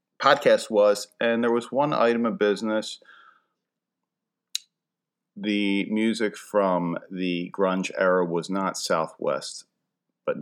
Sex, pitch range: male, 95-140 Hz